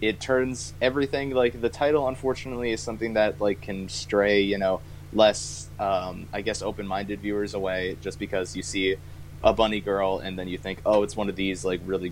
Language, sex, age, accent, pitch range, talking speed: English, male, 20-39, American, 95-120 Hz, 200 wpm